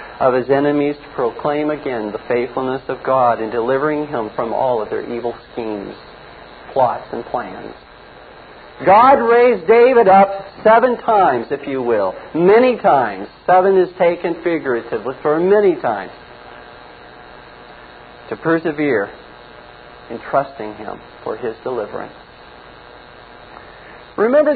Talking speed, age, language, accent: 120 wpm, 50-69, English, American